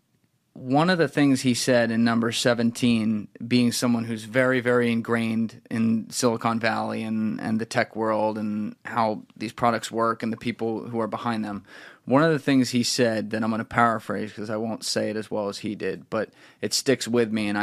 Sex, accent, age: male, American, 30-49